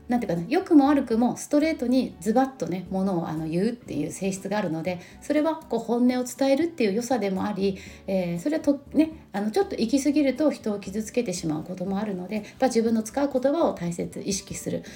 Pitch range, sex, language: 180-265 Hz, female, Japanese